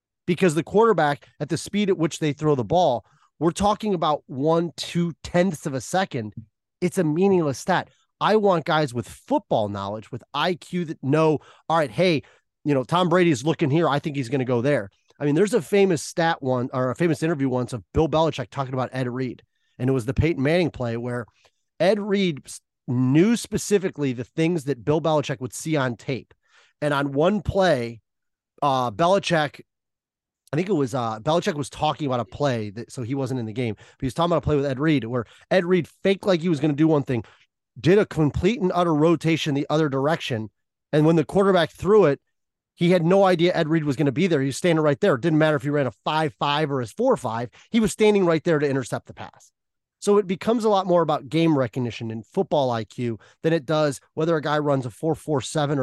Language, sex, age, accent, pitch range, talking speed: English, male, 30-49, American, 130-170 Hz, 225 wpm